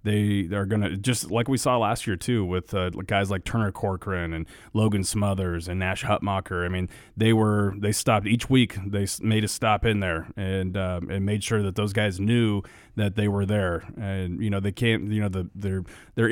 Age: 30-49